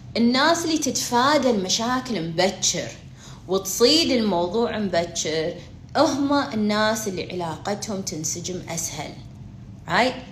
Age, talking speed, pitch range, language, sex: 30-49, 85 wpm, 165-270 Hz, Arabic, female